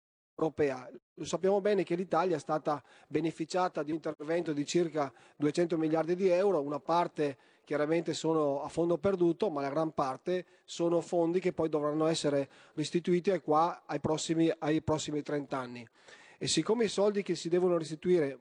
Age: 30-49